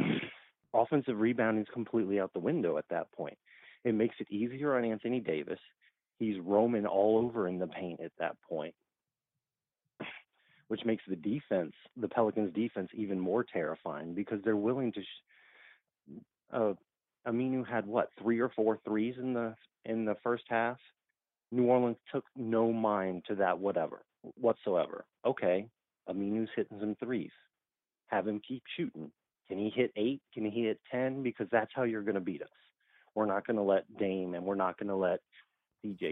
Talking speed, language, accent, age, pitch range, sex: 170 wpm, English, American, 30-49, 100-115 Hz, male